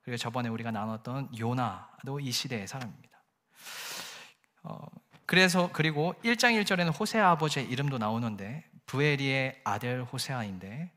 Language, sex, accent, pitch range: Korean, male, native, 120-170 Hz